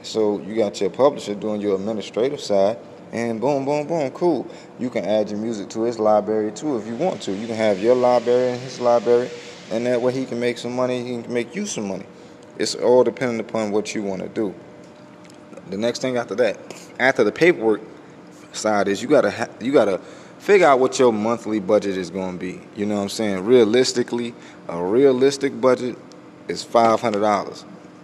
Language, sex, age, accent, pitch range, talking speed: English, male, 20-39, American, 95-120 Hz, 195 wpm